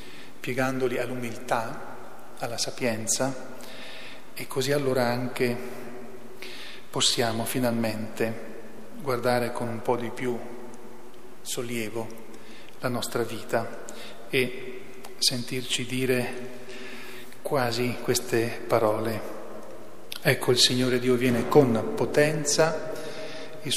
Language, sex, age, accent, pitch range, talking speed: Italian, male, 40-59, native, 115-130 Hz, 85 wpm